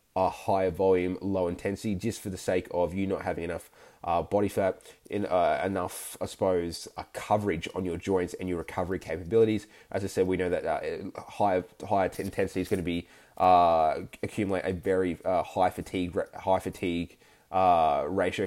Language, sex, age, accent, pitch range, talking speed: English, male, 20-39, Australian, 90-105 Hz, 180 wpm